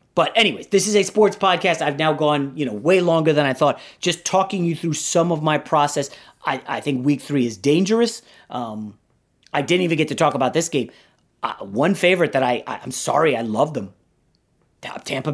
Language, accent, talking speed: English, American, 210 wpm